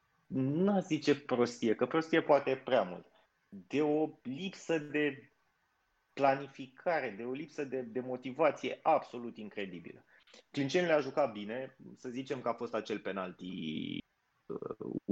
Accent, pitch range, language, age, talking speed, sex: native, 105-135 Hz, Romanian, 20-39, 135 wpm, male